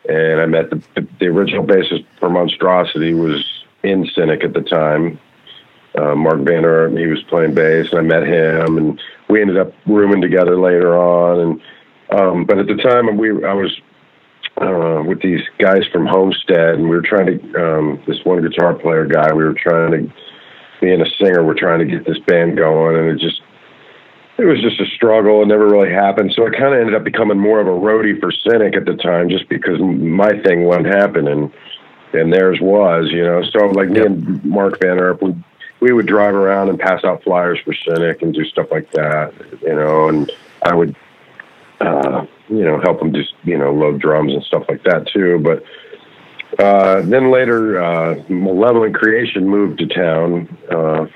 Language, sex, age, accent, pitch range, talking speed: English, male, 50-69, American, 80-100 Hz, 200 wpm